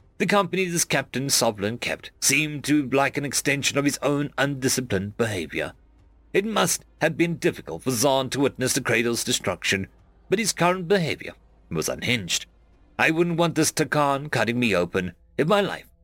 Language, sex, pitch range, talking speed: English, male, 110-160 Hz, 170 wpm